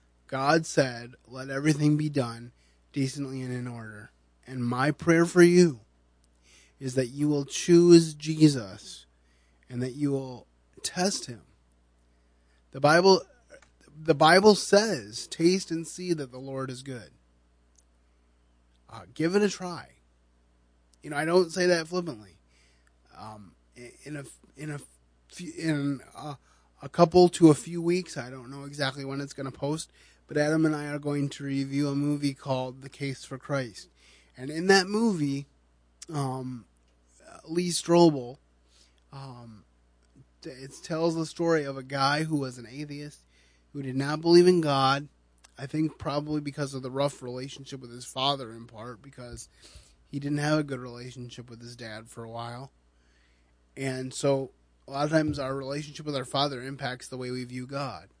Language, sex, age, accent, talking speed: English, male, 30-49, American, 160 wpm